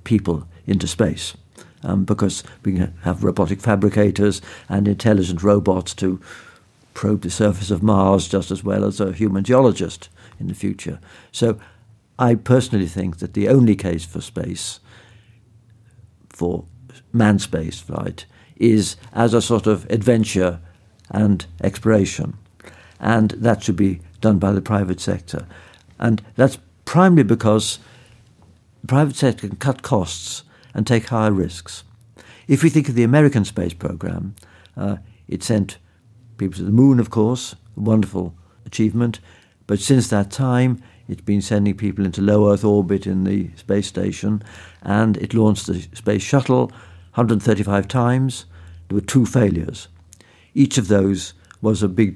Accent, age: British, 60-79